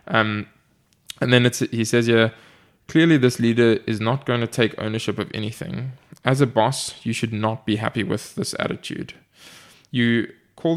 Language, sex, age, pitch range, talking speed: English, male, 20-39, 110-130 Hz, 175 wpm